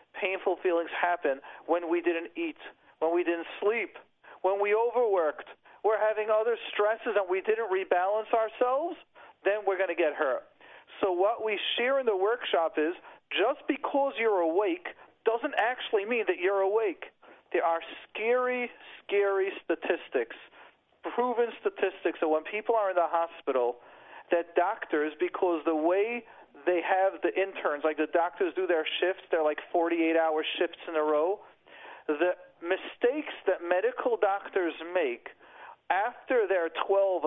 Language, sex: English, male